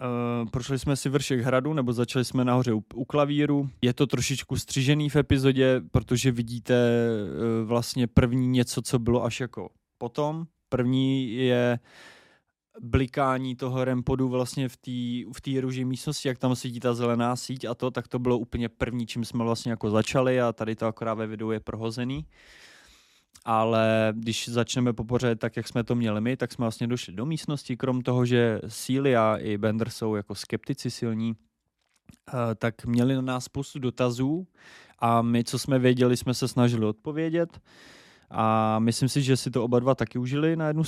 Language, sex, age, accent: Czech, male, 20-39, native